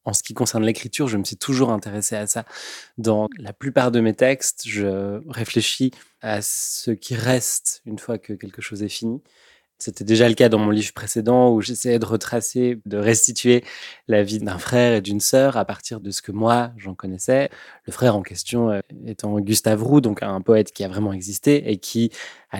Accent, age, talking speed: French, 20-39, 205 wpm